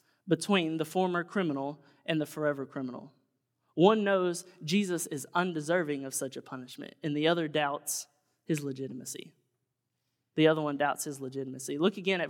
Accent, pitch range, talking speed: American, 140-175 Hz, 155 wpm